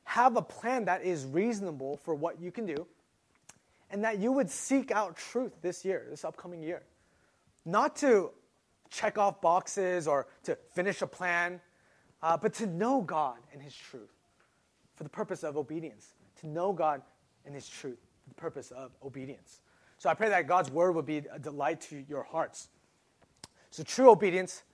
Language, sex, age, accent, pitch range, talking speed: English, male, 20-39, American, 155-230 Hz, 175 wpm